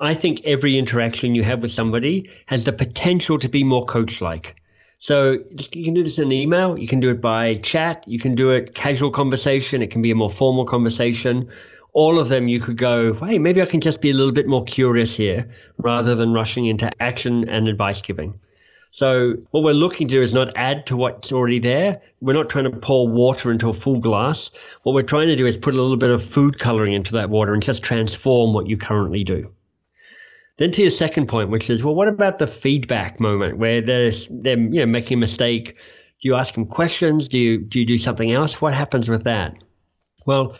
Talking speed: 225 wpm